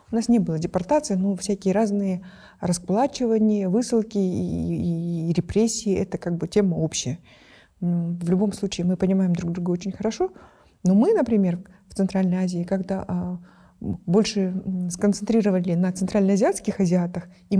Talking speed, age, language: 140 wpm, 30-49, Russian